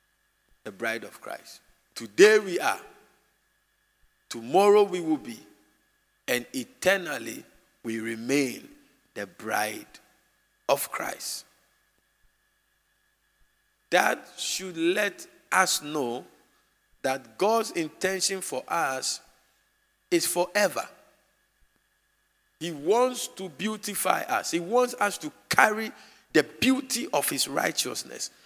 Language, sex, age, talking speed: English, male, 50-69, 95 wpm